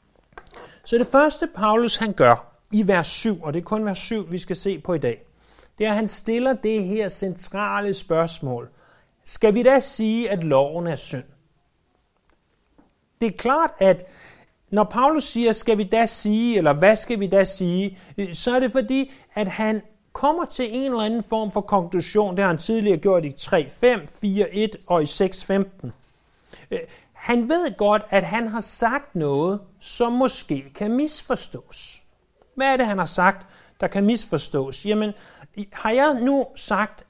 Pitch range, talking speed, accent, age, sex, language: 180-230 Hz, 170 wpm, native, 30-49, male, Danish